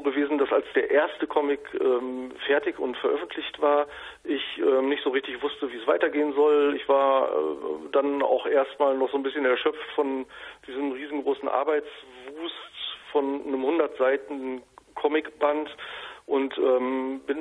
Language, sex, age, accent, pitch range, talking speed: German, male, 40-59, German, 135-150 Hz, 155 wpm